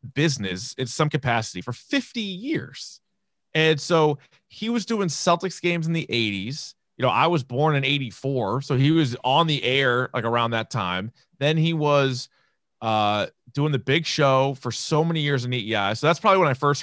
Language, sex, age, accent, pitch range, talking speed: English, male, 30-49, American, 125-160 Hz, 195 wpm